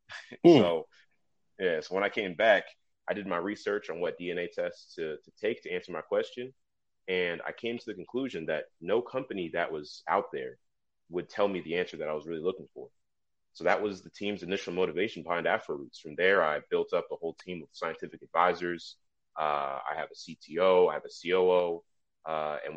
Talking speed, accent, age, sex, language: 205 wpm, American, 30-49, male, English